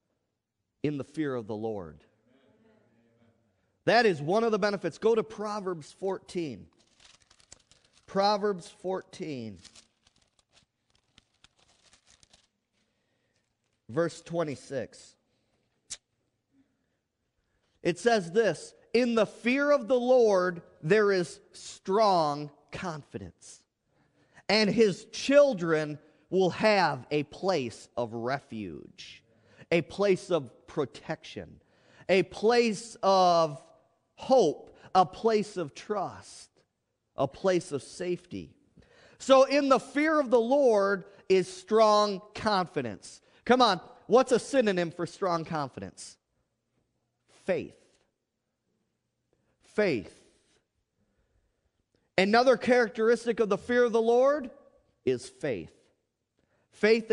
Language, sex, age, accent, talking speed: English, male, 40-59, American, 95 wpm